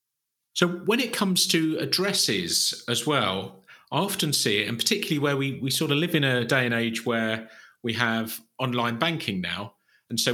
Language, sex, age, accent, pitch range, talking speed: English, male, 40-59, British, 110-145 Hz, 190 wpm